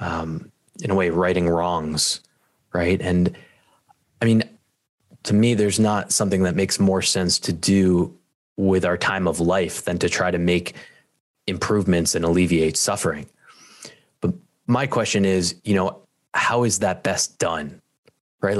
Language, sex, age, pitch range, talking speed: English, male, 20-39, 90-105 Hz, 150 wpm